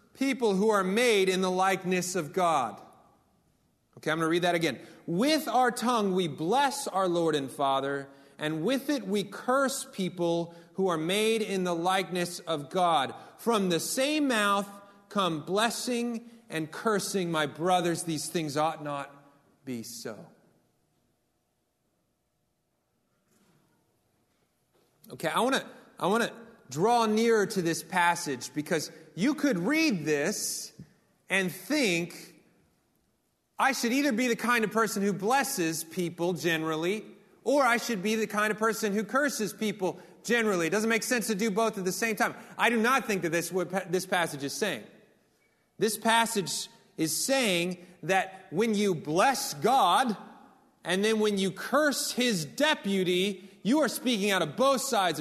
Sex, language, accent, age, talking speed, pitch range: male, English, American, 30-49, 155 wpm, 170-230 Hz